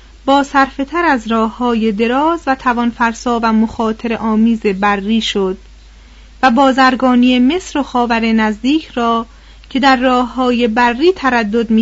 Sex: female